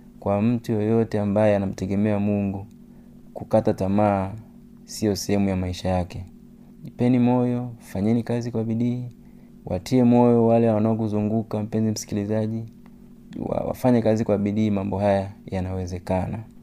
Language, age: Swahili, 30-49